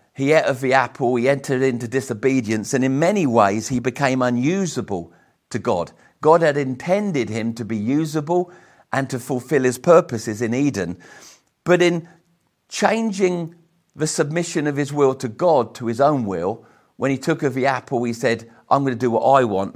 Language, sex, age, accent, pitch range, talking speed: English, male, 50-69, British, 120-155 Hz, 185 wpm